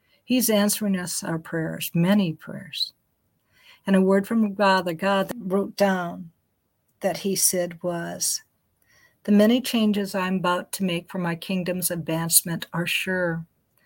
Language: English